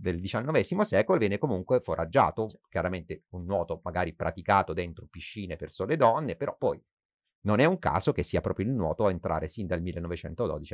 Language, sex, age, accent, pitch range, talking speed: Italian, male, 30-49, native, 80-100 Hz, 180 wpm